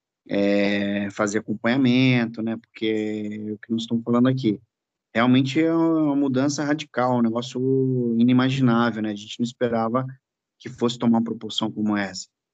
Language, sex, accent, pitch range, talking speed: Portuguese, male, Brazilian, 110-120 Hz, 155 wpm